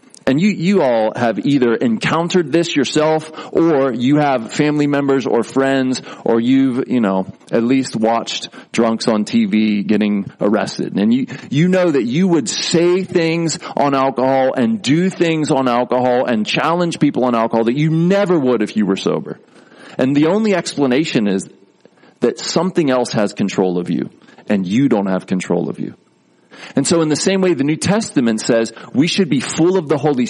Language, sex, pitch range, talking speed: English, male, 120-170 Hz, 185 wpm